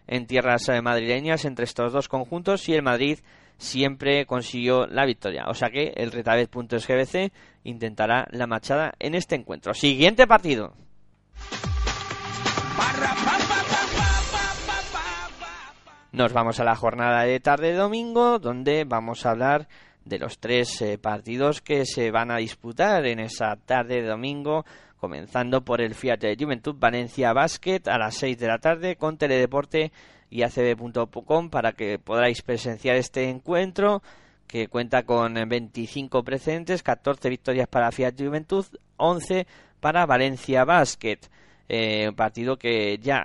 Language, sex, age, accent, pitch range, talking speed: Spanish, male, 20-39, Spanish, 115-145 Hz, 135 wpm